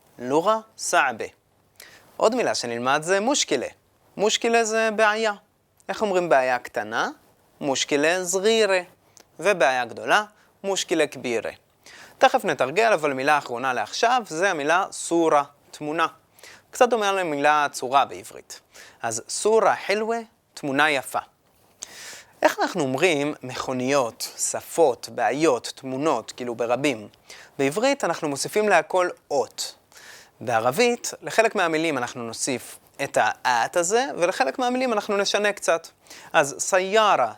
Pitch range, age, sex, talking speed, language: 145-225 Hz, 30-49, male, 110 wpm, Hebrew